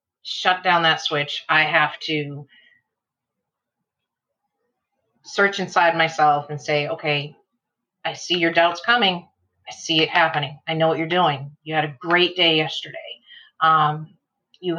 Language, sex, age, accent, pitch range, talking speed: English, female, 30-49, American, 155-185 Hz, 140 wpm